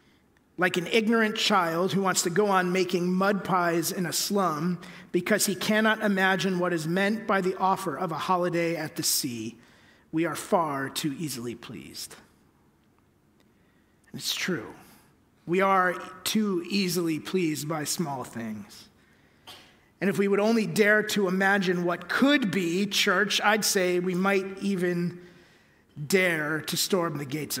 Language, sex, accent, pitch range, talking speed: English, male, American, 170-210 Hz, 150 wpm